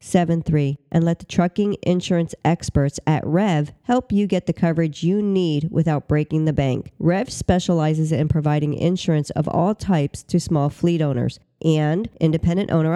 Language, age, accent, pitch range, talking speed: English, 40-59, American, 155-185 Hz, 160 wpm